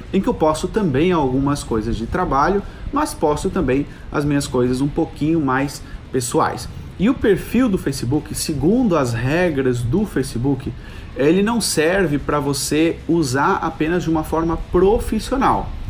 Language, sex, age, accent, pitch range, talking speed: Portuguese, male, 40-59, Brazilian, 130-180 Hz, 150 wpm